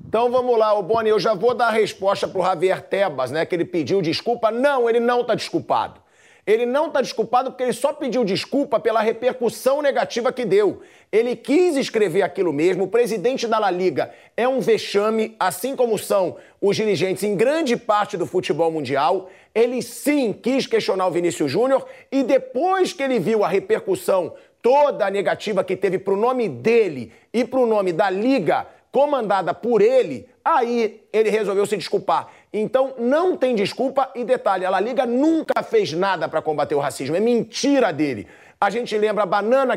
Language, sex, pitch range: Portuguese, male, 195-260 Hz